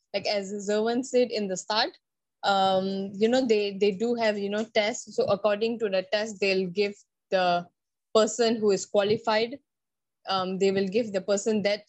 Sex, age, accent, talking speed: female, 20-39, Indian, 180 wpm